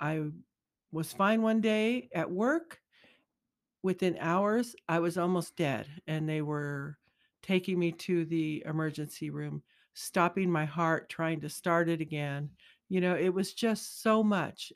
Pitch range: 160-190 Hz